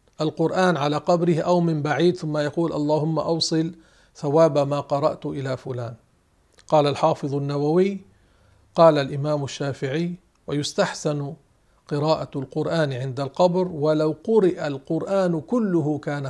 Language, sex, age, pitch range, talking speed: Arabic, male, 50-69, 140-185 Hz, 115 wpm